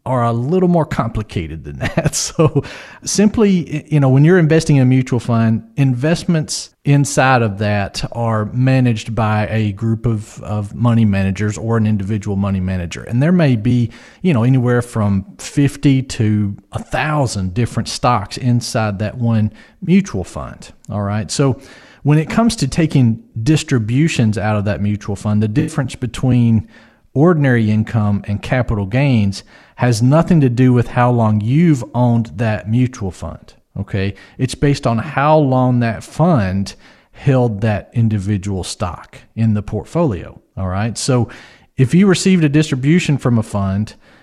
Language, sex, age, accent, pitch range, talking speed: English, male, 40-59, American, 110-140 Hz, 155 wpm